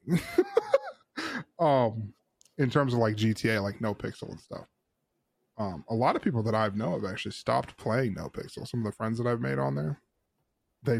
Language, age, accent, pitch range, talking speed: English, 10-29, American, 105-135 Hz, 195 wpm